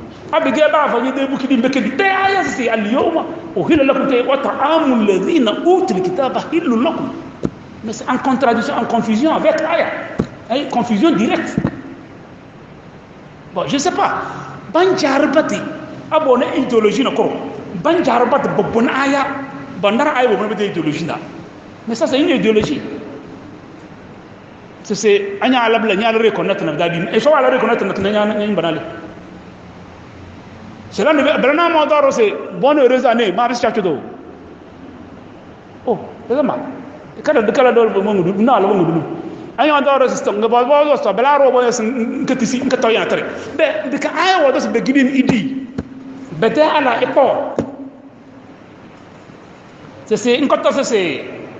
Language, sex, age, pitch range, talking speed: English, male, 40-59, 220-285 Hz, 50 wpm